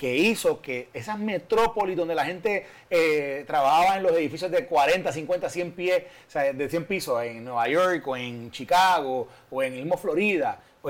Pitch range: 135-195 Hz